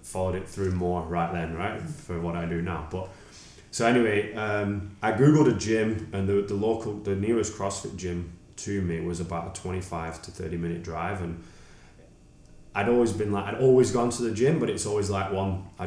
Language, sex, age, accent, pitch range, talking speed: English, male, 20-39, British, 85-95 Hz, 210 wpm